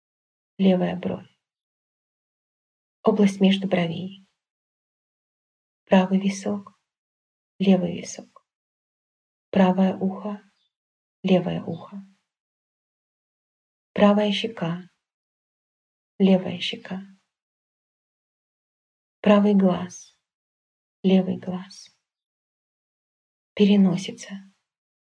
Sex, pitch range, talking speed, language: female, 185-200 Hz, 55 wpm, English